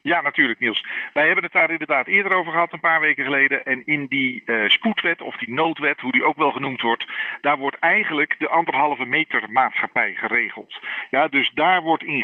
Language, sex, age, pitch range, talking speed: Dutch, male, 50-69, 130-195 Hz, 205 wpm